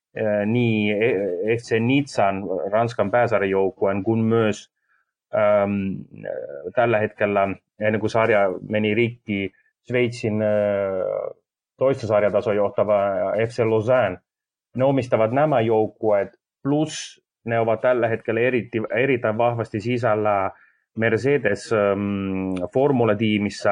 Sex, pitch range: male, 100-115 Hz